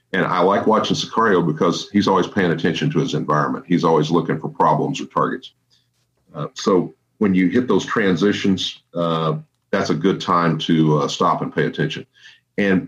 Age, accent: 40-59, American